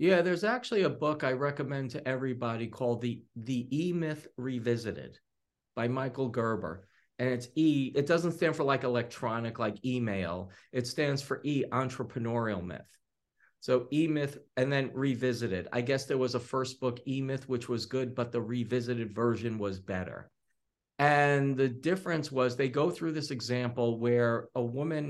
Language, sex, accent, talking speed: English, male, American, 165 wpm